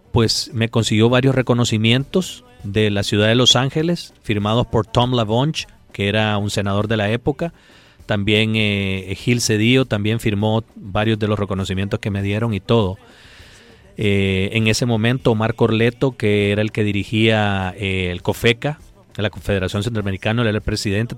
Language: Spanish